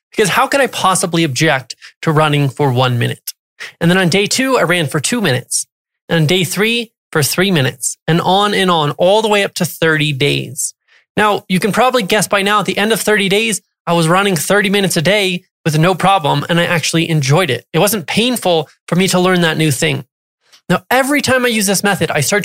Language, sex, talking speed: English, male, 230 wpm